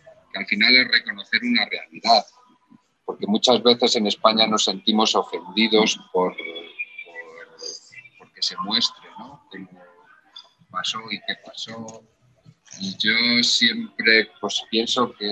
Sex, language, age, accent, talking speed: male, Spanish, 40-59, Spanish, 125 wpm